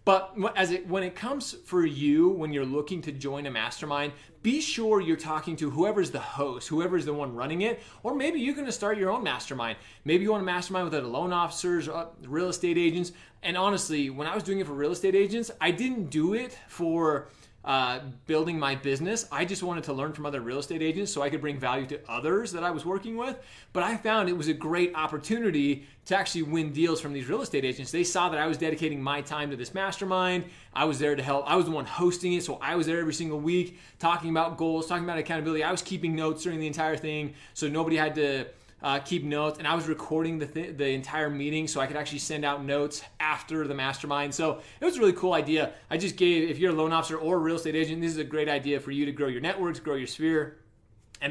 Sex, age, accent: male, 30-49, American